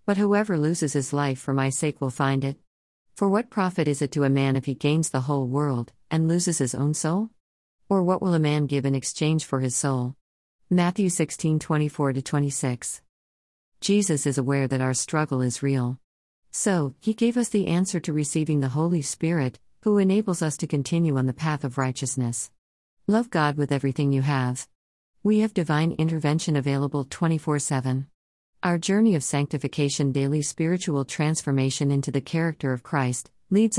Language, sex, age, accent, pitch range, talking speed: English, female, 50-69, American, 130-170 Hz, 175 wpm